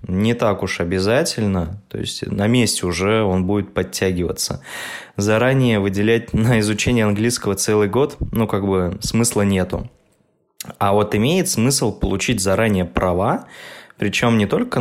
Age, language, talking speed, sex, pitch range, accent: 20-39, Russian, 140 wpm, male, 90-115 Hz, native